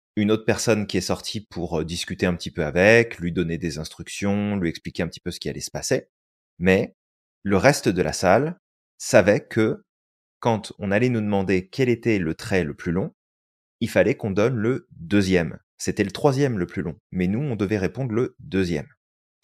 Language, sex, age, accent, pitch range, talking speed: French, male, 30-49, French, 85-115 Hz, 200 wpm